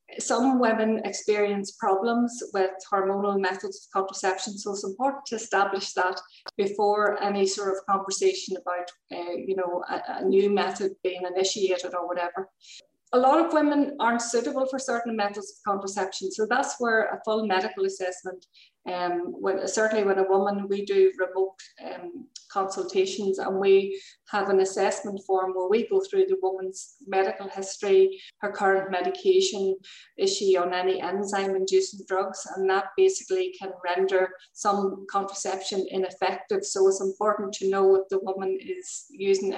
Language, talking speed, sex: English, 160 wpm, female